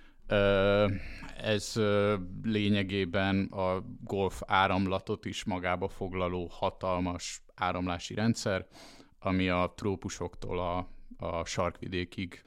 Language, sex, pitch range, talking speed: Hungarian, male, 90-100 Hz, 80 wpm